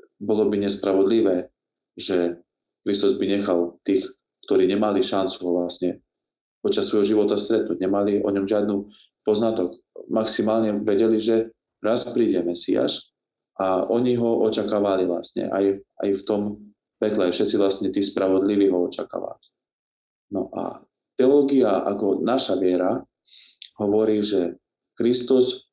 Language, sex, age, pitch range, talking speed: Slovak, male, 40-59, 95-115 Hz, 125 wpm